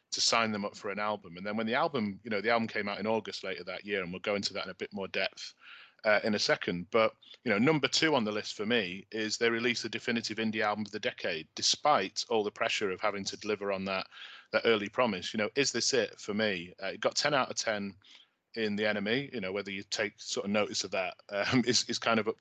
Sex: male